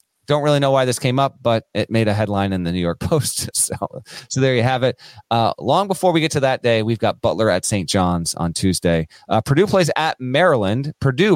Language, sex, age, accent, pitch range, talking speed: English, male, 30-49, American, 100-135 Hz, 240 wpm